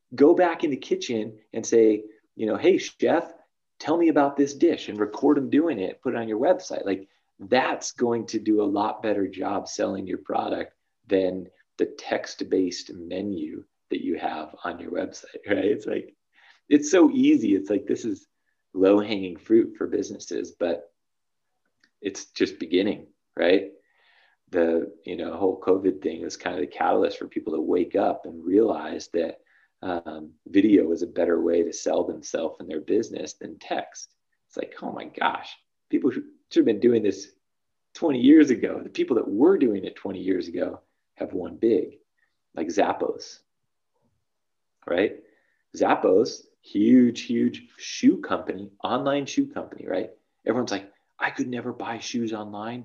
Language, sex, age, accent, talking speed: English, male, 30-49, American, 165 wpm